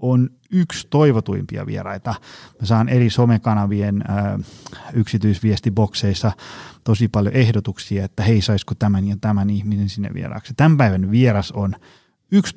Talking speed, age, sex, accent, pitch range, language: 120 wpm, 30-49, male, native, 100-120 Hz, Finnish